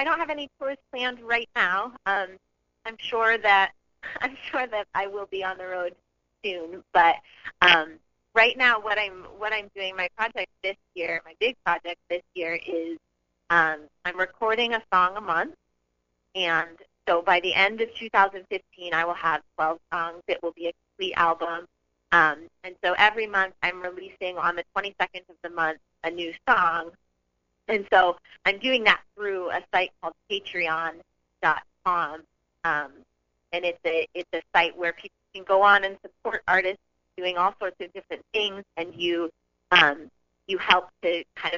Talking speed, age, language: 175 wpm, 30-49, English